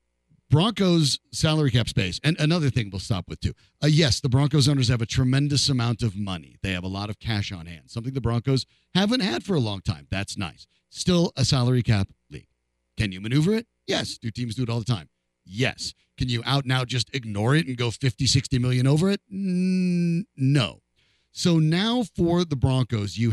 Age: 50-69